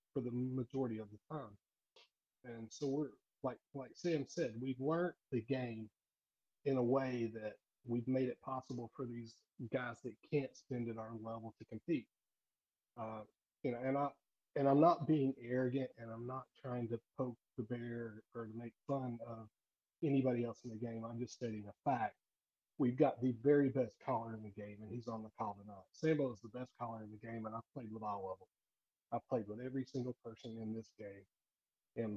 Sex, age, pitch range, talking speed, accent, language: male, 40-59, 110-130 Hz, 205 wpm, American, English